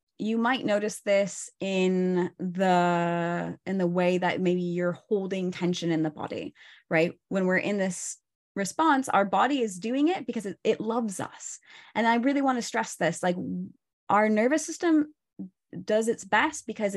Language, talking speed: English, 170 wpm